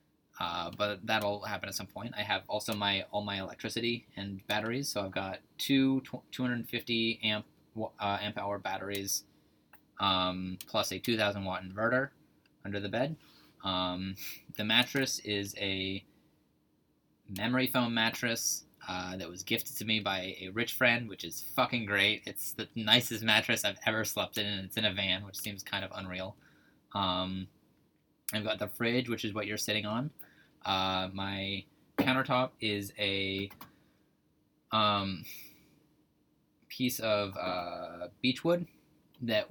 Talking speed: 145 wpm